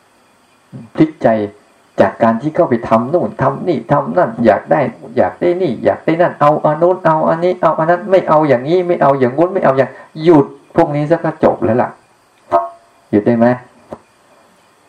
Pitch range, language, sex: 115-165 Hz, Thai, male